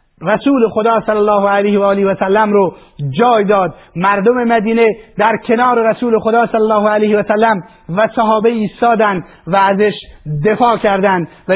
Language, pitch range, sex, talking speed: Persian, 205-225 Hz, male, 165 wpm